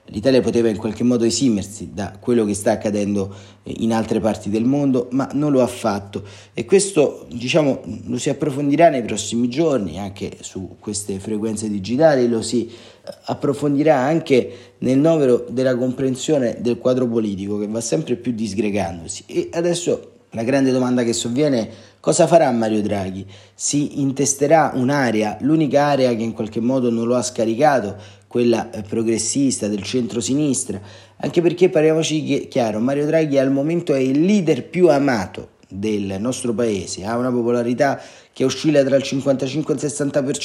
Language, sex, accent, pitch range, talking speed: Italian, male, native, 110-140 Hz, 155 wpm